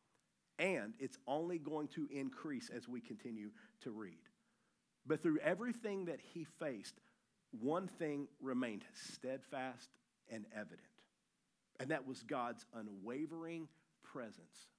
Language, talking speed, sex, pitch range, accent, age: English, 120 wpm, male, 180-245 Hz, American, 40-59